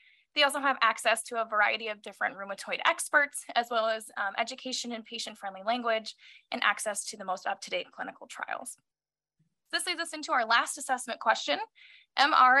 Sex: female